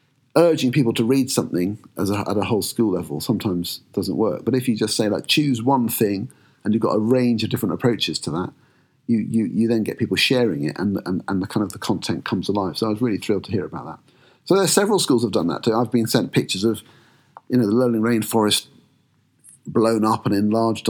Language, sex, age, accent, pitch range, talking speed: English, male, 50-69, British, 100-125 Hz, 245 wpm